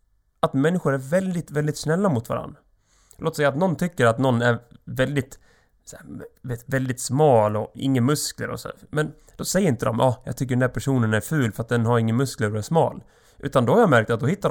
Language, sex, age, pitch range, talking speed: Swedish, male, 30-49, 115-155 Hz, 230 wpm